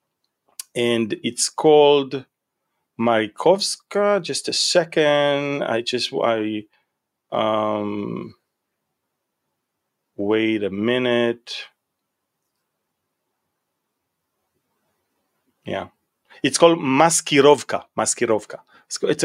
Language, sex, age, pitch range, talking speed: English, male, 30-49, 110-150 Hz, 60 wpm